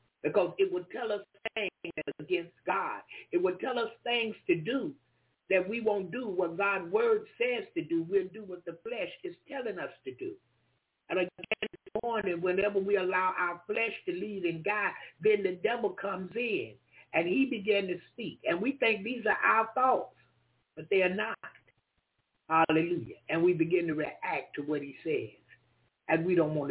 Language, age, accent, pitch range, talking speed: English, 60-79, American, 160-235 Hz, 180 wpm